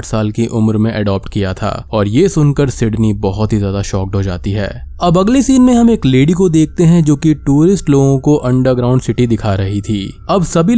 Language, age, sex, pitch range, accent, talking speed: Hindi, 20-39, male, 105-150 Hz, native, 225 wpm